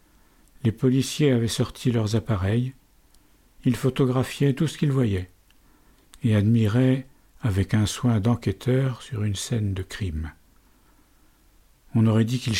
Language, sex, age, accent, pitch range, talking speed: French, male, 50-69, French, 105-130 Hz, 130 wpm